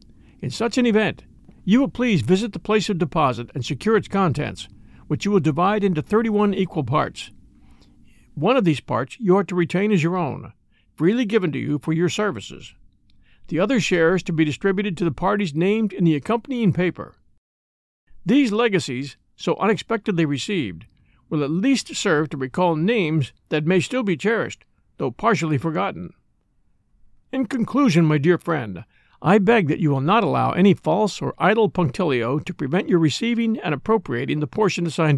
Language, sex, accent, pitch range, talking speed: English, male, American, 150-210 Hz, 175 wpm